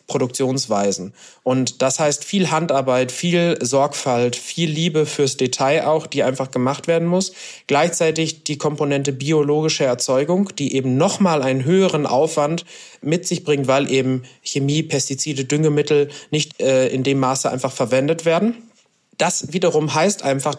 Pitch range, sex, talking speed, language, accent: 130-165 Hz, male, 145 wpm, German, German